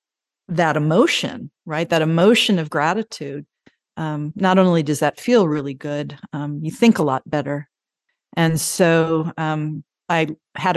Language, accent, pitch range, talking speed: English, American, 145-175 Hz, 145 wpm